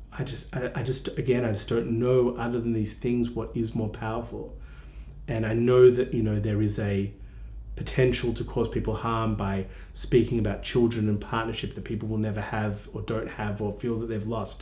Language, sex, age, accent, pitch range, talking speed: English, male, 30-49, Australian, 105-125 Hz, 205 wpm